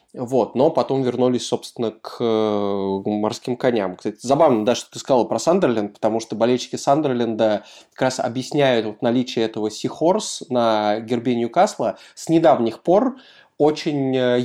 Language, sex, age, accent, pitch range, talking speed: Russian, male, 20-39, native, 115-140 Hz, 140 wpm